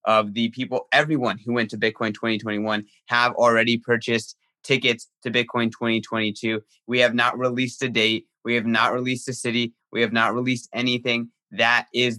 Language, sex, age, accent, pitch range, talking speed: English, male, 20-39, American, 110-120 Hz, 170 wpm